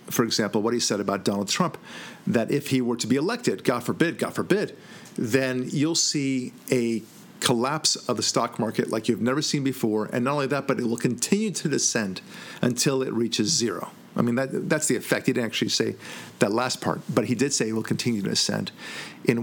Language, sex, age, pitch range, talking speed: English, male, 50-69, 120-160 Hz, 215 wpm